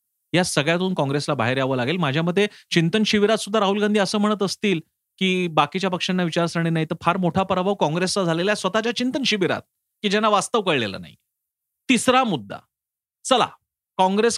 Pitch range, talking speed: 145-205 Hz, 115 wpm